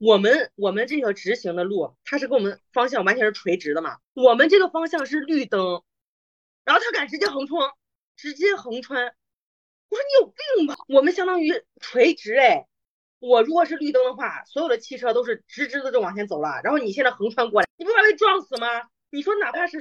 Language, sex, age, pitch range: Chinese, female, 20-39, 220-345 Hz